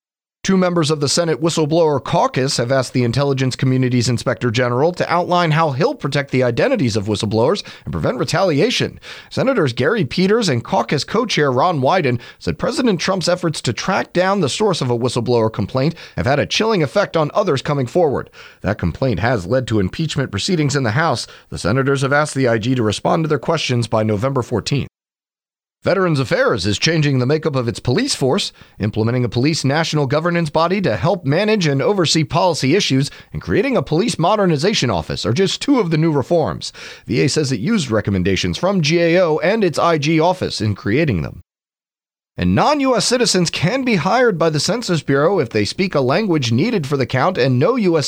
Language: English